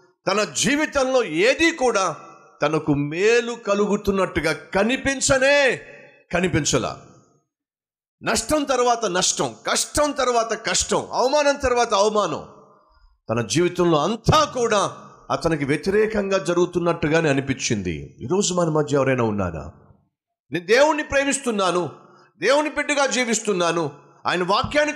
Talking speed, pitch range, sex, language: 90 wpm, 160-260 Hz, male, Telugu